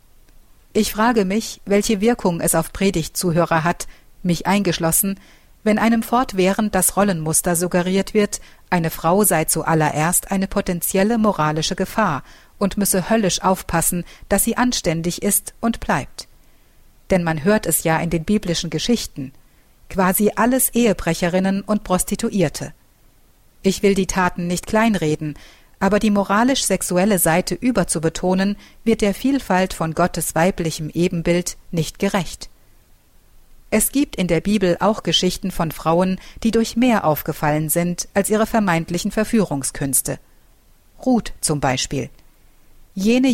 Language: German